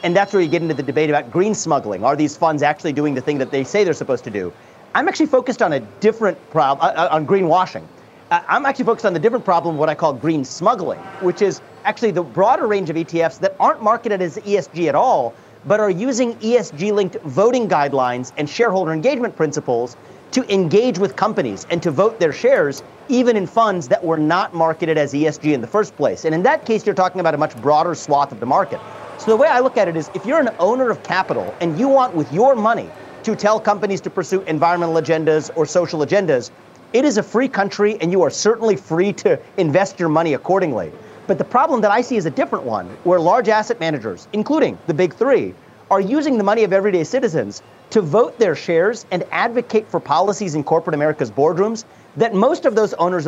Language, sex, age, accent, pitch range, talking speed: English, male, 40-59, American, 160-220 Hz, 220 wpm